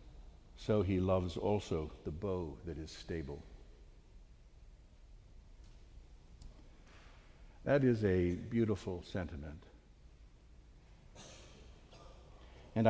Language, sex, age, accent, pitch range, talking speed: English, male, 60-79, American, 85-110 Hz, 70 wpm